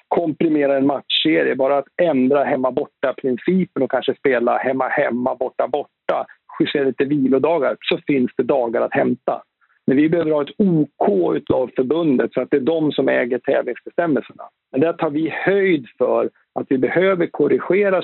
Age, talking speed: 50-69, 155 wpm